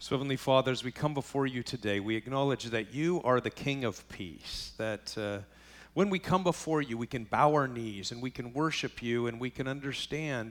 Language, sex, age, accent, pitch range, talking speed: English, male, 50-69, American, 90-135 Hz, 215 wpm